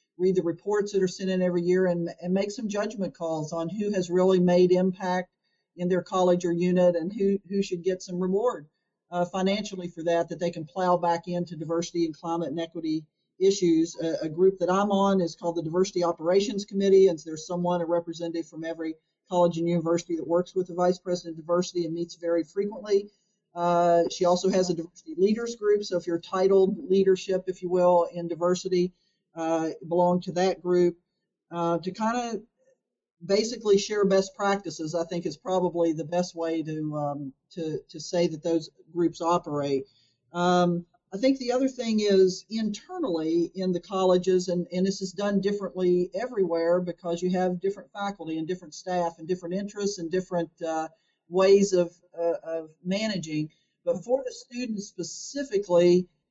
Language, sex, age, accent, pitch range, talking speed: English, male, 50-69, American, 170-195 Hz, 185 wpm